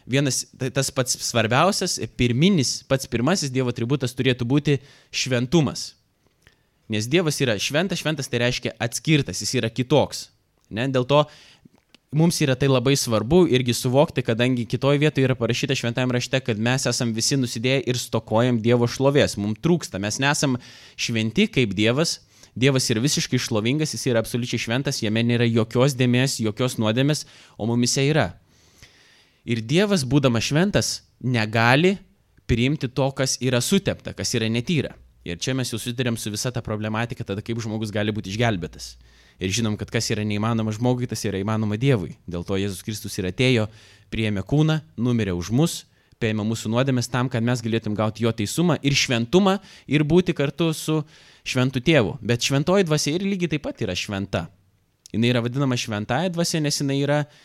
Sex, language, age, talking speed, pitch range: male, English, 20-39, 165 wpm, 110-140 Hz